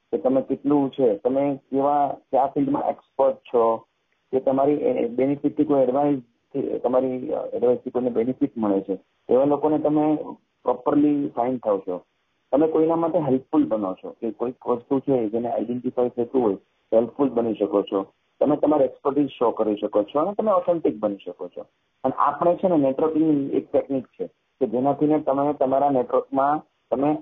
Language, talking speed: English, 50 wpm